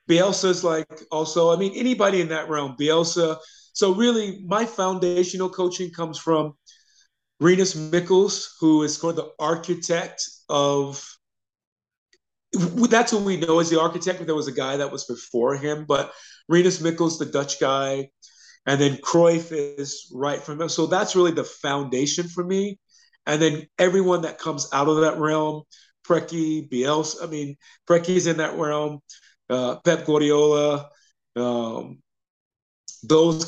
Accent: American